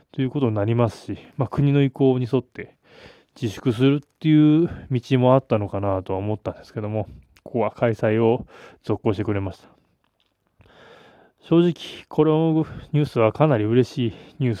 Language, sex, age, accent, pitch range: Japanese, male, 20-39, native, 110-145 Hz